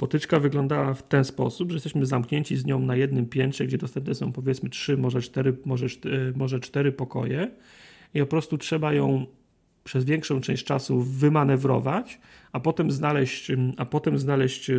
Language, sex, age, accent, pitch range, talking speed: Polish, male, 40-59, native, 130-155 Hz, 145 wpm